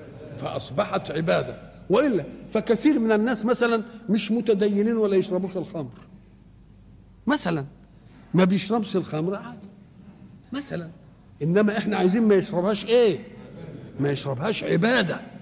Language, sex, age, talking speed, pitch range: Arabic, male, 50-69, 105 wpm, 165-220 Hz